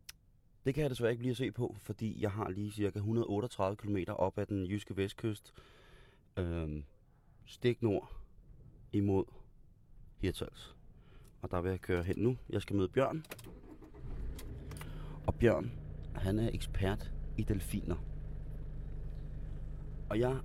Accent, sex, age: native, male, 30-49